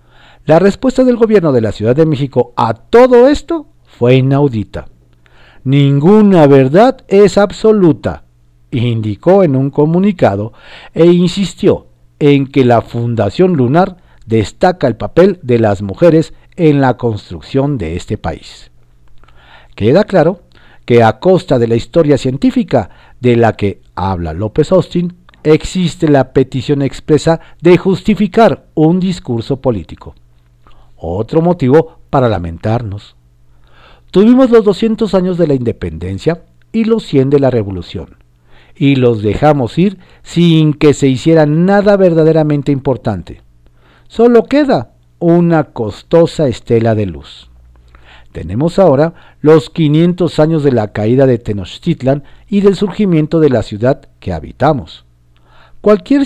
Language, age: Spanish, 50-69